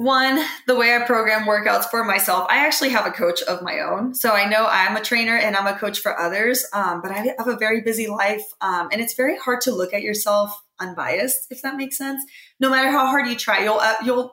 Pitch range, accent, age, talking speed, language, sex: 195-240 Hz, American, 20-39, 245 wpm, English, female